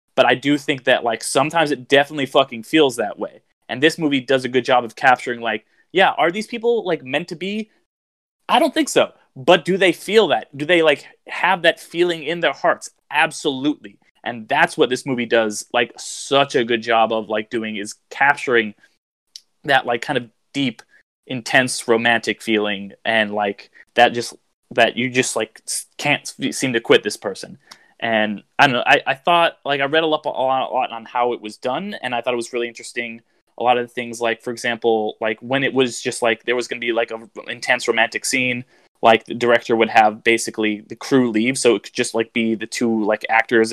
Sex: male